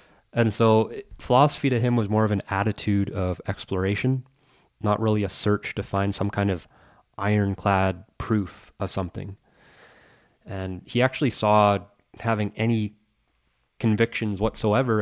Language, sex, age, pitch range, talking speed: English, male, 20-39, 95-110 Hz, 130 wpm